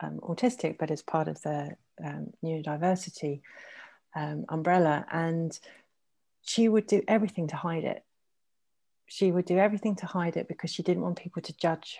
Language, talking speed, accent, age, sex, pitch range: English, 165 wpm, British, 30-49, female, 160-185 Hz